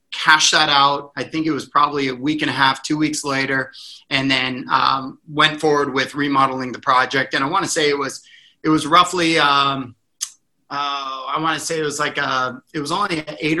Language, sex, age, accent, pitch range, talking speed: English, male, 30-49, American, 140-165 Hz, 220 wpm